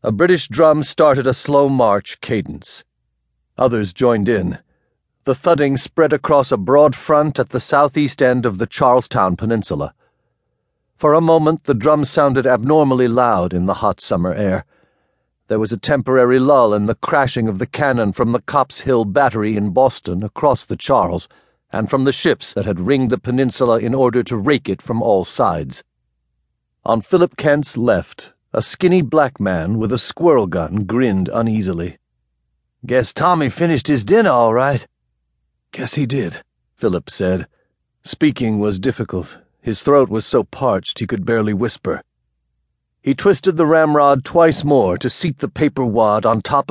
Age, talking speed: 50-69, 165 wpm